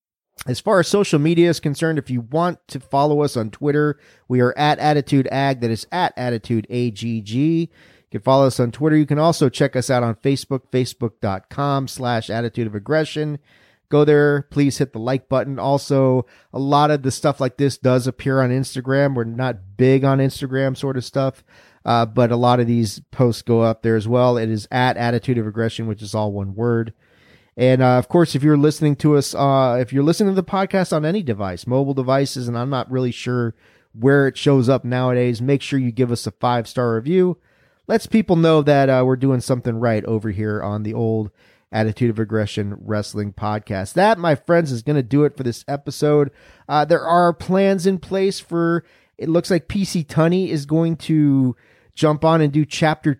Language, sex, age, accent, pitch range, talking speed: English, male, 40-59, American, 120-150 Hz, 205 wpm